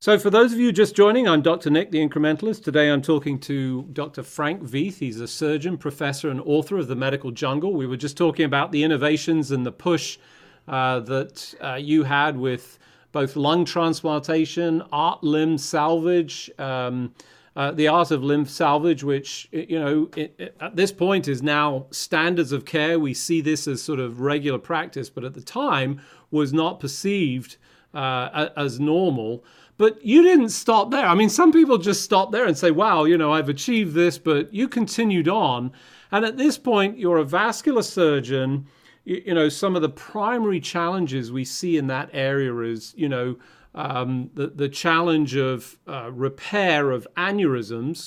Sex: male